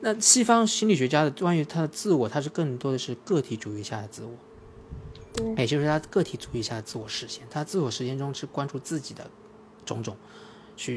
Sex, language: male, Chinese